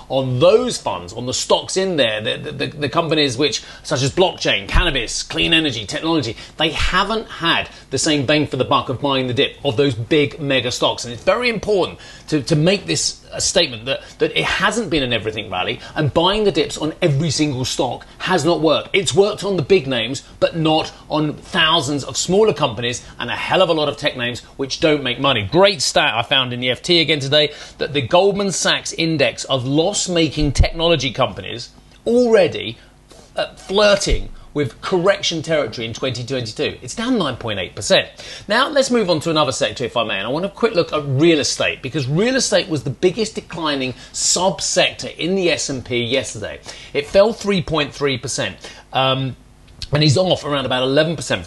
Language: English